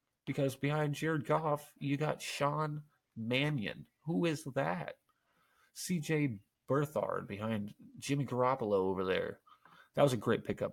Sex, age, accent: male, 30-49, American